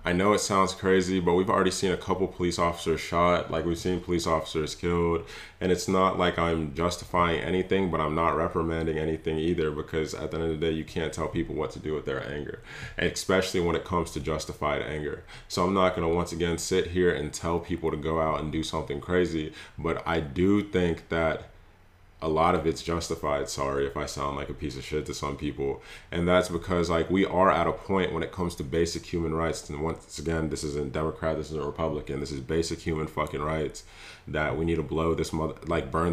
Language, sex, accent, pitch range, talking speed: English, male, American, 80-90 Hz, 230 wpm